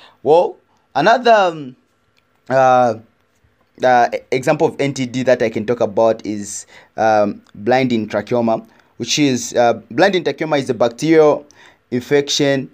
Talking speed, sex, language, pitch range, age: 120 wpm, male, English, 110-130 Hz, 20-39